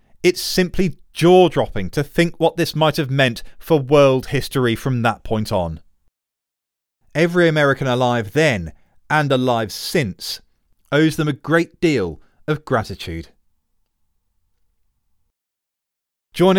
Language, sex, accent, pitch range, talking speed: English, male, British, 115-165 Hz, 115 wpm